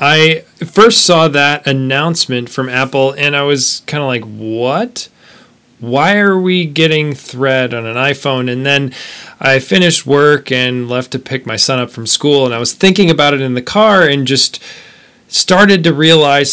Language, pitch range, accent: English, 130-160 Hz, American